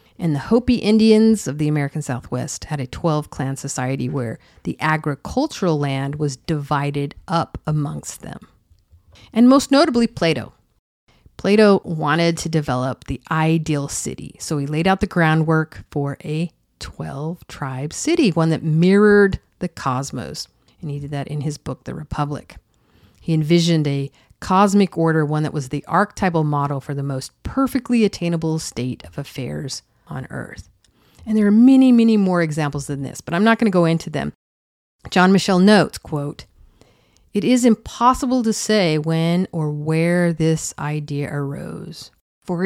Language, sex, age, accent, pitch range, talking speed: English, female, 40-59, American, 140-185 Hz, 160 wpm